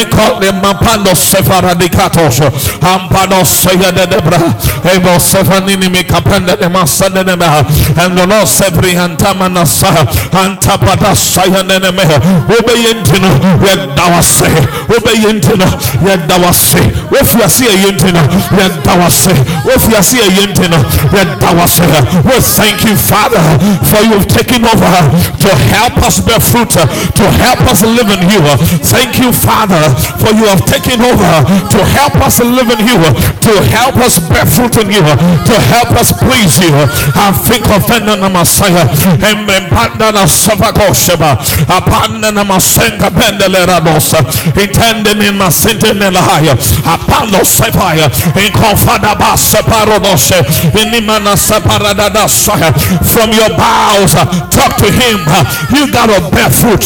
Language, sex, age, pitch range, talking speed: English, male, 50-69, 160-200 Hz, 125 wpm